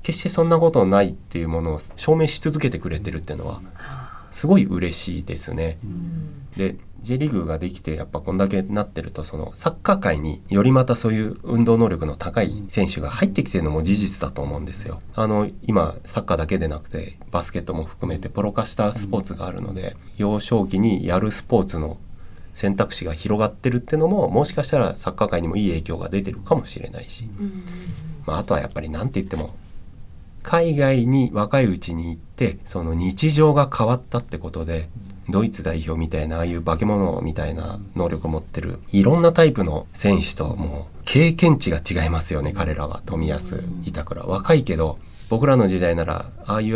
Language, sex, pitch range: Japanese, male, 85-120 Hz